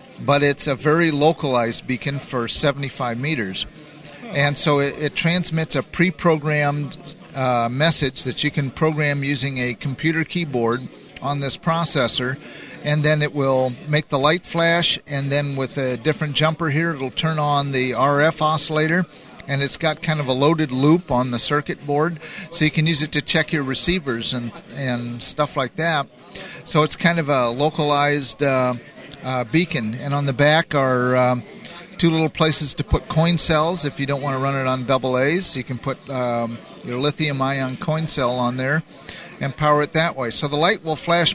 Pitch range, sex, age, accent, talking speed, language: 130-160 Hz, male, 50-69, American, 185 wpm, English